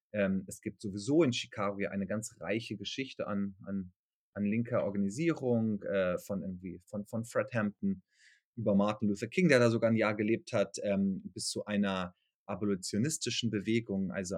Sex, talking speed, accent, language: male, 150 wpm, German, German